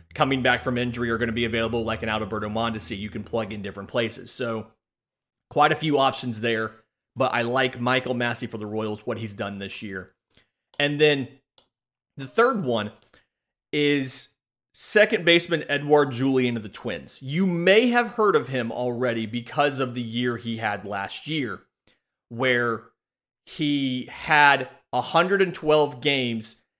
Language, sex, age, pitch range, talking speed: English, male, 30-49, 120-150 Hz, 160 wpm